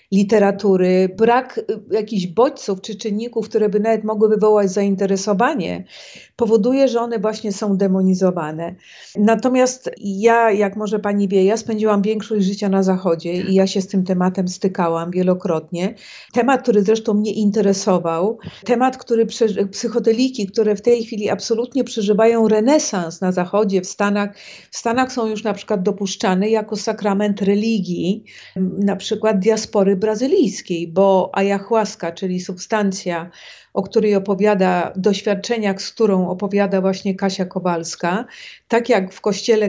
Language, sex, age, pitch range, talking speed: Polish, female, 50-69, 190-225 Hz, 135 wpm